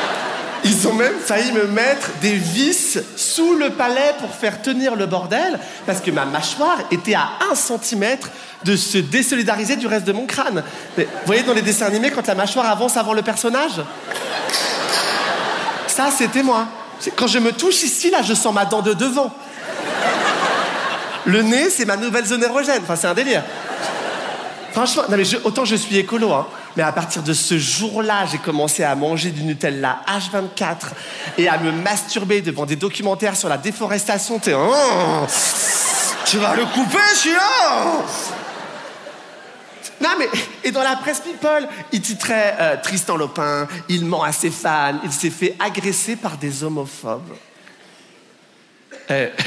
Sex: male